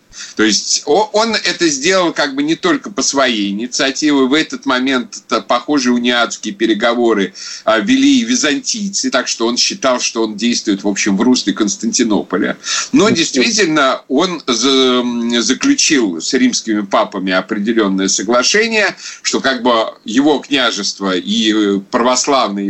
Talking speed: 125 wpm